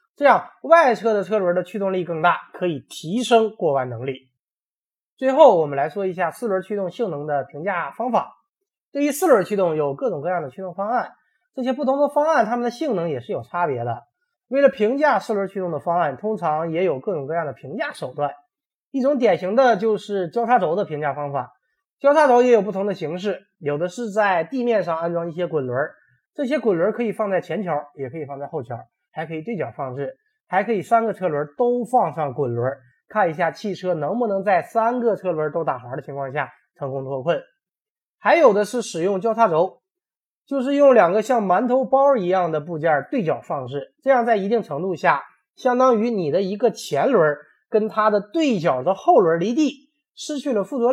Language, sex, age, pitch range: Chinese, male, 20-39, 165-250 Hz